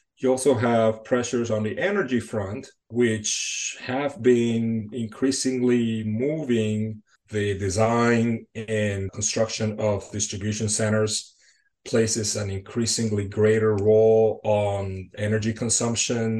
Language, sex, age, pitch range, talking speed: English, male, 30-49, 105-115 Hz, 100 wpm